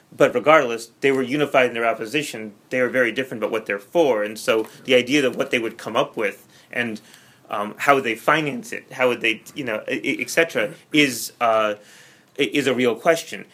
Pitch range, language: 115-140 Hz, English